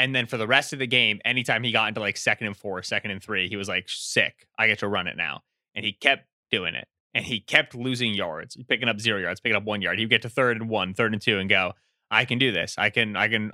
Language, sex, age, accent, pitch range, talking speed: English, male, 20-39, American, 110-140 Hz, 295 wpm